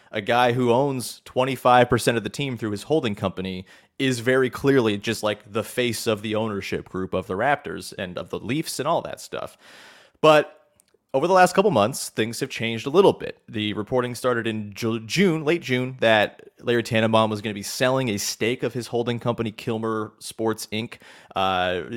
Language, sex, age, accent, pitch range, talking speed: English, male, 30-49, American, 100-130 Hz, 195 wpm